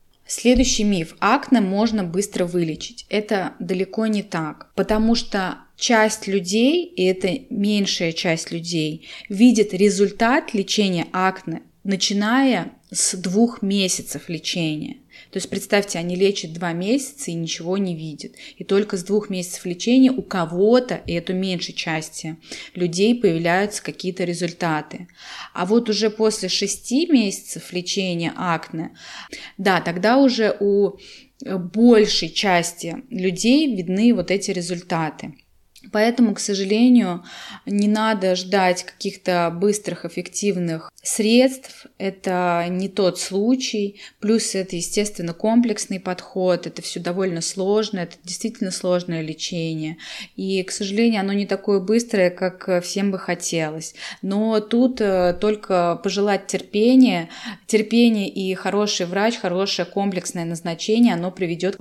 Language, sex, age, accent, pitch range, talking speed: Russian, female, 20-39, native, 180-220 Hz, 125 wpm